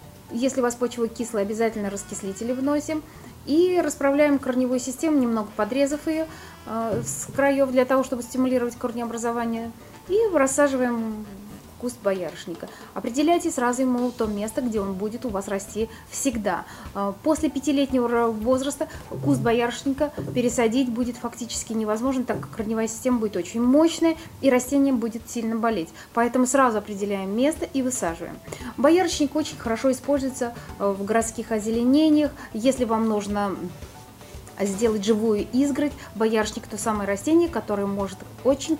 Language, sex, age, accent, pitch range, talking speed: Russian, female, 20-39, native, 215-275 Hz, 135 wpm